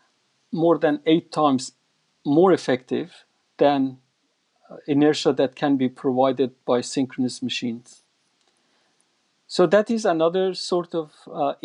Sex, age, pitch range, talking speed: male, 50-69, 135-175 Hz, 120 wpm